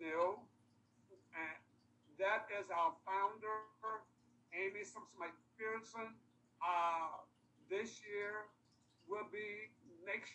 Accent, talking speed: American, 75 wpm